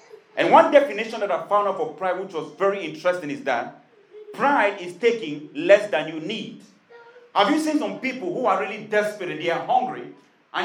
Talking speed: 205 wpm